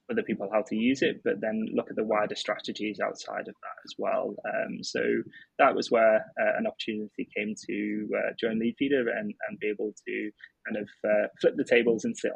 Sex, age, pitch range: male, 20-39, 105-120 Hz